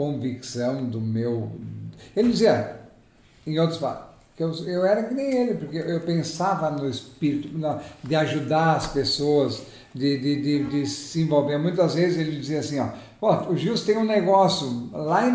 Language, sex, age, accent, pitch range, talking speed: Portuguese, male, 50-69, Brazilian, 125-165 Hz, 175 wpm